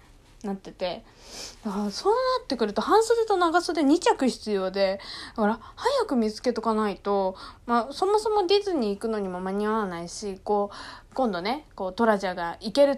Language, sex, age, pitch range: Japanese, female, 20-39, 205-315 Hz